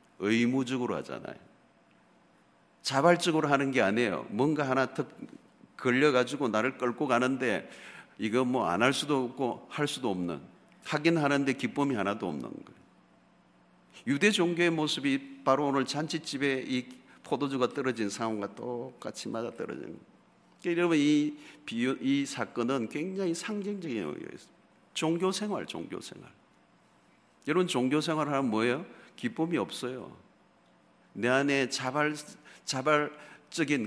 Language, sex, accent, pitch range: Korean, male, native, 125-165 Hz